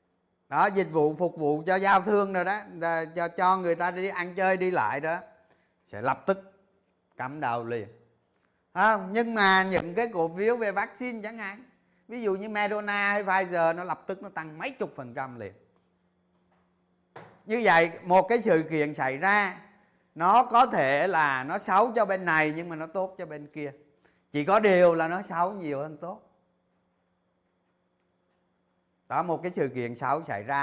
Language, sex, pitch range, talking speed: Vietnamese, male, 145-195 Hz, 185 wpm